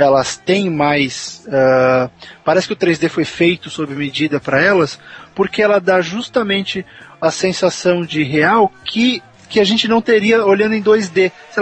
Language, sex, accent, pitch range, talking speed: Portuguese, male, Brazilian, 155-225 Hz, 165 wpm